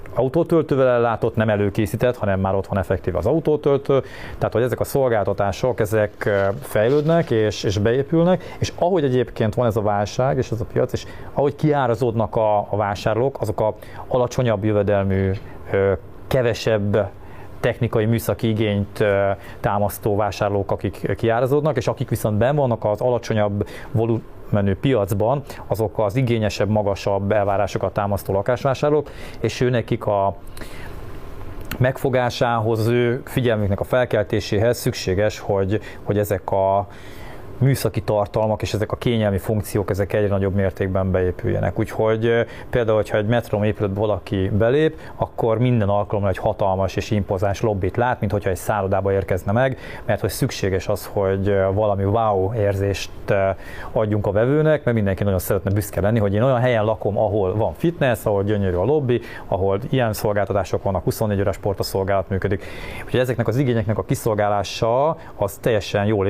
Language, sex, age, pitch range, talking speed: Hungarian, male, 30-49, 100-120 Hz, 145 wpm